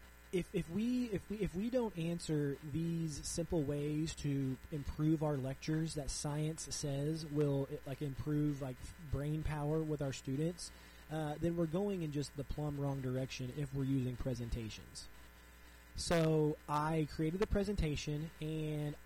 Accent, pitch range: American, 135-170 Hz